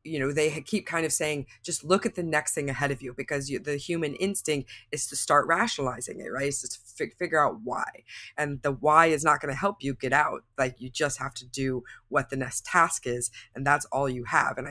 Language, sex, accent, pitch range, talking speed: English, female, American, 130-155 Hz, 240 wpm